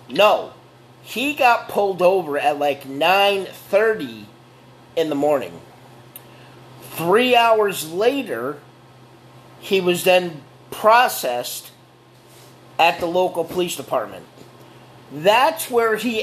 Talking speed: 95 wpm